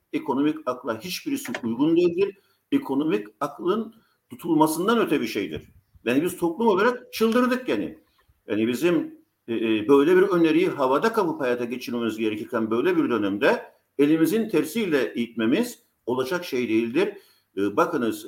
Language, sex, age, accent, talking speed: Turkish, male, 50-69, native, 120 wpm